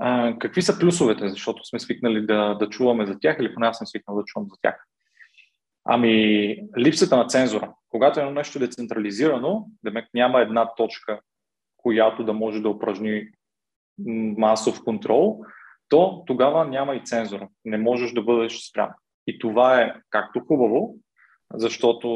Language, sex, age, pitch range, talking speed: Bulgarian, male, 20-39, 110-125 Hz, 150 wpm